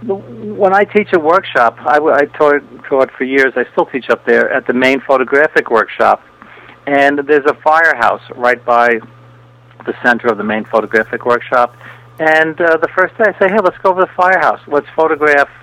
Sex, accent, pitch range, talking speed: male, American, 120-150 Hz, 190 wpm